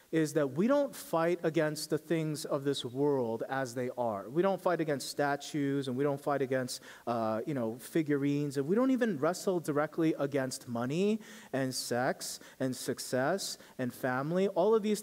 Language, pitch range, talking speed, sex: English, 135-190 Hz, 180 wpm, male